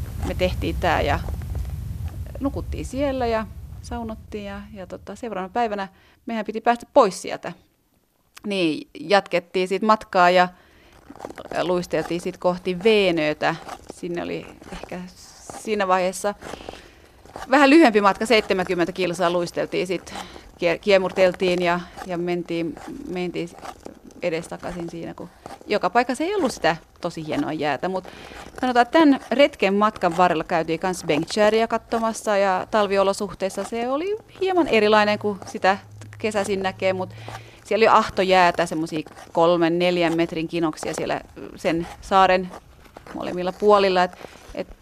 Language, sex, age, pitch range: Finnish, female, 30-49, 170-220 Hz